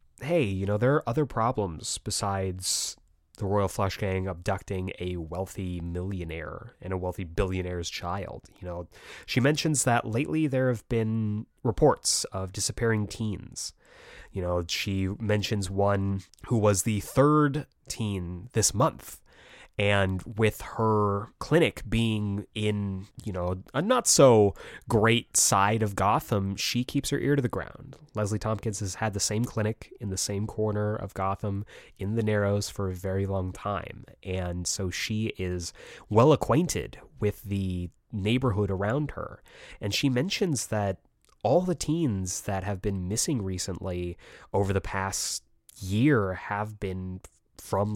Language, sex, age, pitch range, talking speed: English, male, 20-39, 95-115 Hz, 145 wpm